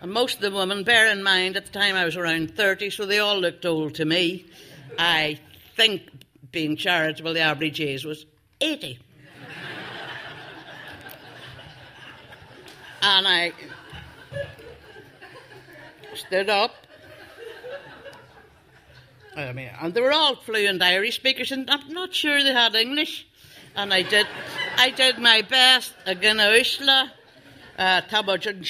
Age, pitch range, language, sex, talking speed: 60-79, 165-240 Hz, English, female, 125 wpm